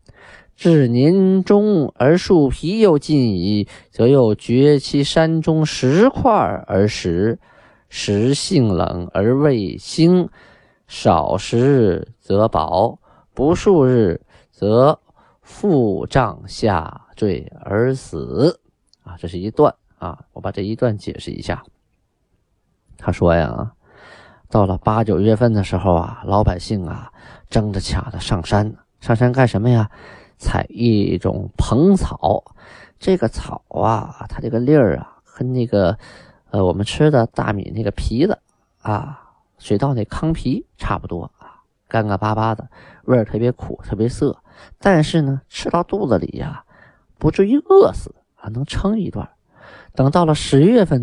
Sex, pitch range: male, 100-145 Hz